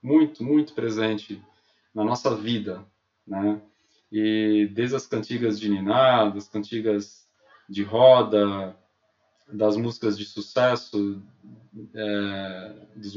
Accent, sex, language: Brazilian, male, Portuguese